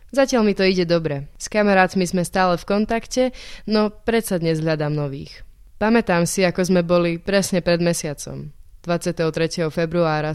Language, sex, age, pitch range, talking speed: Slovak, female, 20-39, 155-185 Hz, 150 wpm